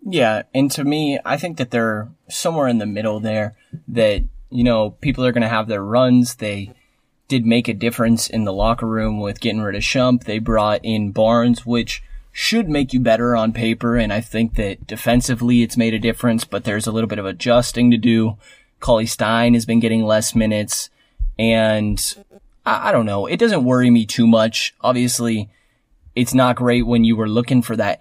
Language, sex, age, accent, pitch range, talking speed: English, male, 20-39, American, 105-120 Hz, 200 wpm